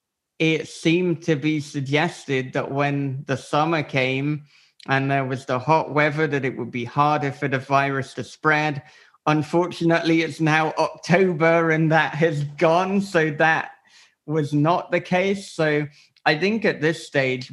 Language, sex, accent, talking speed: English, male, British, 160 wpm